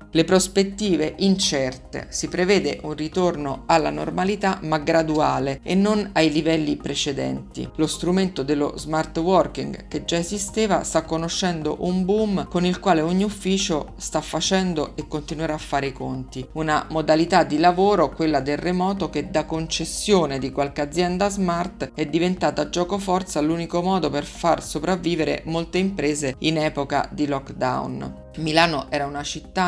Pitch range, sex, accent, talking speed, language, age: 150-180 Hz, female, native, 150 wpm, Italian, 50-69